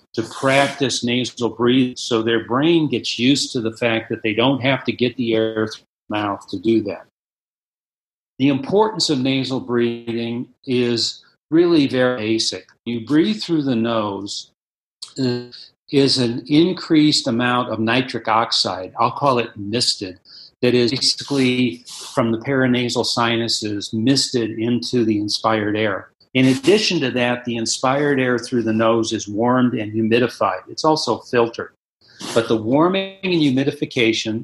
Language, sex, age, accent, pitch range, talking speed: English, male, 50-69, American, 110-135 Hz, 145 wpm